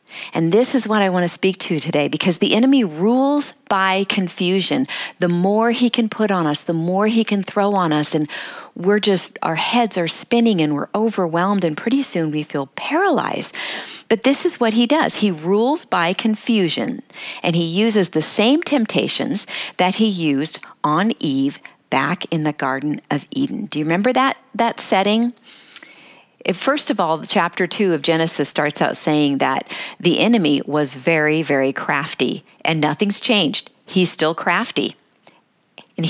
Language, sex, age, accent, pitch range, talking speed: English, female, 50-69, American, 165-235 Hz, 175 wpm